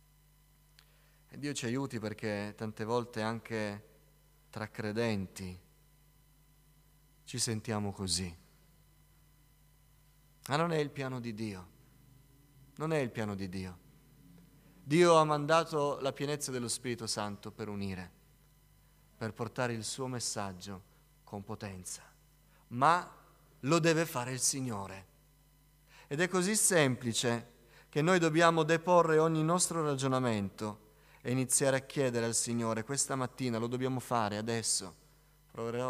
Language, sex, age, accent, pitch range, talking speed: Italian, male, 30-49, native, 115-145 Hz, 120 wpm